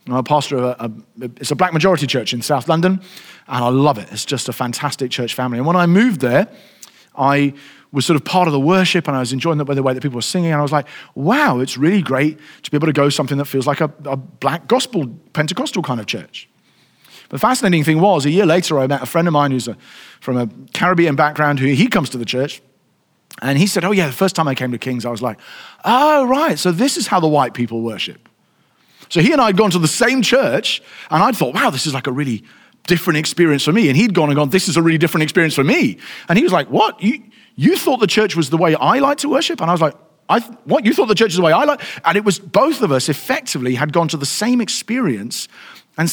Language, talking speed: English, 270 wpm